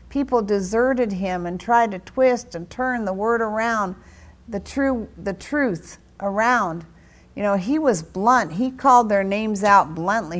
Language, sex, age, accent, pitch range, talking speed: English, female, 50-69, American, 170-230 Hz, 160 wpm